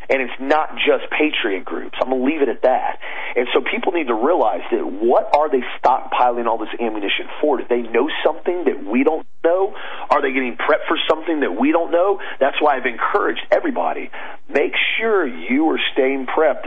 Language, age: English, 40-59